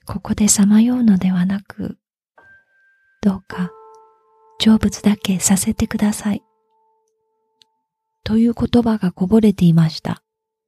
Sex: female